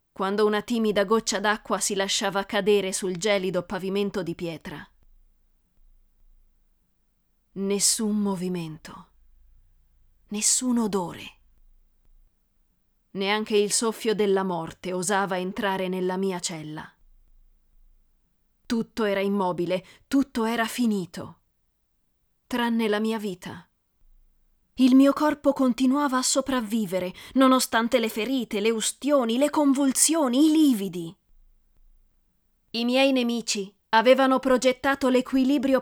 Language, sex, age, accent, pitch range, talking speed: Italian, female, 20-39, native, 165-230 Hz, 95 wpm